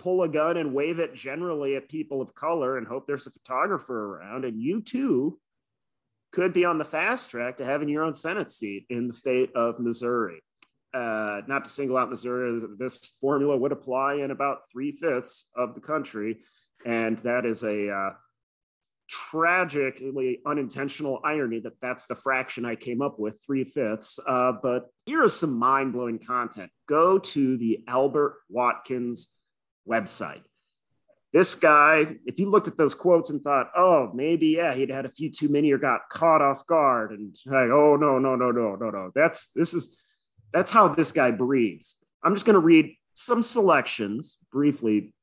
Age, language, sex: 30-49, English, male